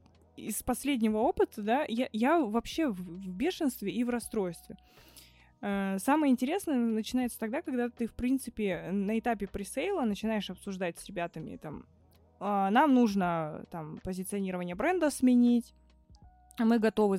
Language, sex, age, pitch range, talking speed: Russian, female, 20-39, 185-250 Hz, 130 wpm